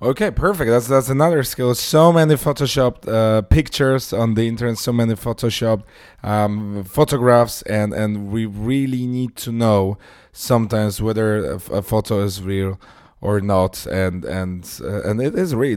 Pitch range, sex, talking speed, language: 100-125 Hz, male, 155 wpm, English